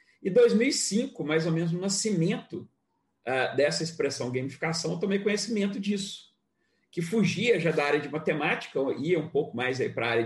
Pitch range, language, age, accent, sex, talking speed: 140-200 Hz, Portuguese, 40-59, Brazilian, male, 165 wpm